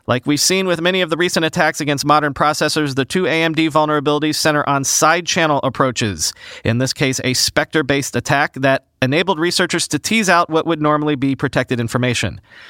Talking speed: 180 wpm